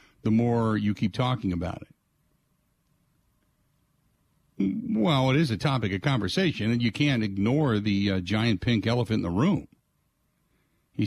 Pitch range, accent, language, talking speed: 105-145 Hz, American, English, 145 wpm